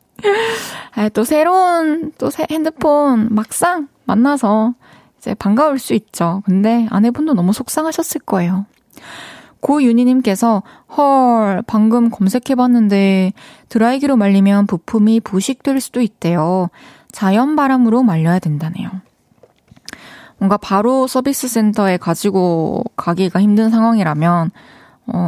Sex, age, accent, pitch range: female, 20-39, native, 190-255 Hz